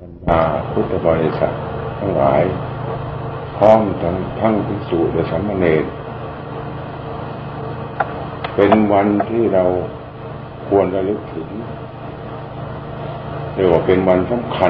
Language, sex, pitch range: Thai, male, 95-115 Hz